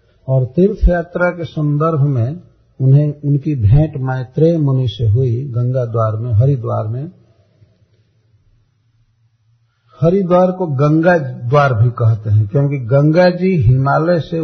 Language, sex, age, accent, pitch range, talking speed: Hindi, male, 50-69, native, 110-145 Hz, 125 wpm